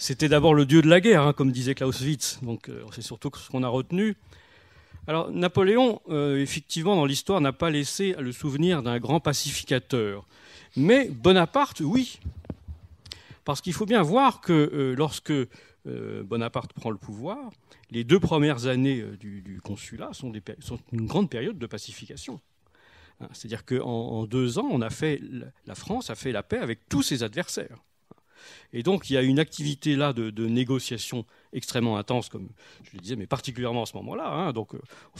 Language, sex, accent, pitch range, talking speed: French, male, French, 115-160 Hz, 185 wpm